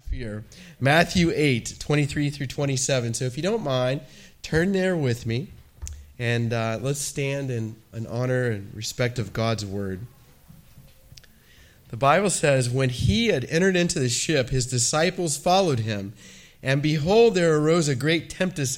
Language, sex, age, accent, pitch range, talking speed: English, male, 40-59, American, 125-180 Hz, 160 wpm